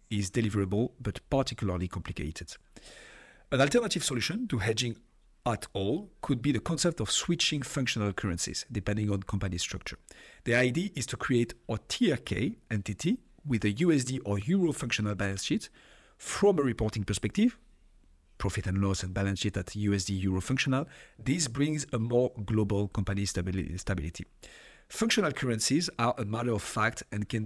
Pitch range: 100-125 Hz